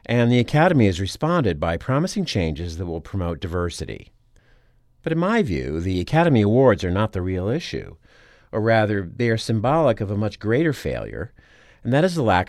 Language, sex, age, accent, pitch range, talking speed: English, male, 50-69, American, 85-120 Hz, 185 wpm